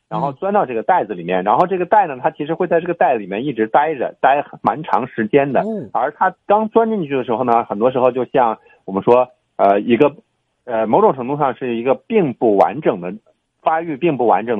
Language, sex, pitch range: Chinese, male, 105-145 Hz